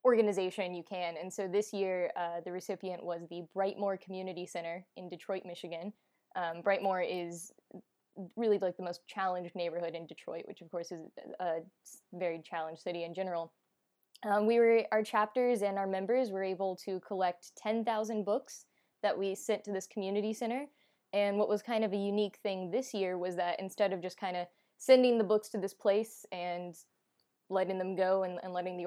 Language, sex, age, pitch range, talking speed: English, female, 10-29, 180-205 Hz, 190 wpm